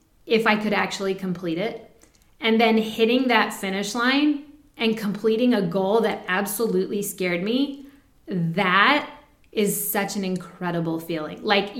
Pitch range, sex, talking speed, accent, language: 200-280 Hz, female, 135 wpm, American, English